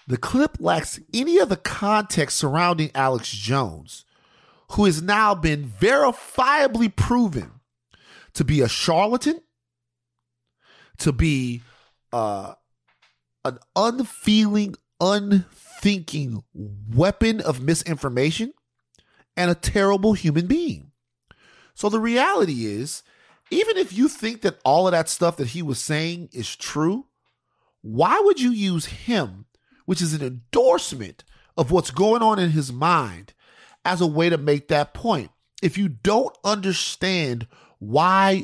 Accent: American